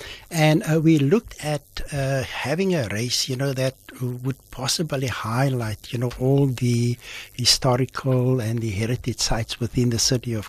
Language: English